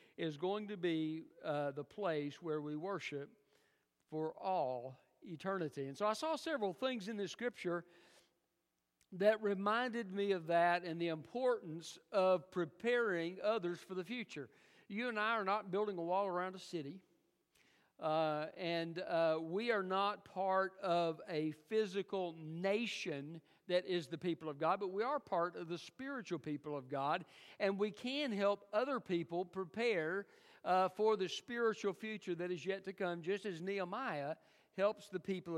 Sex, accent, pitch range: male, American, 165-205 Hz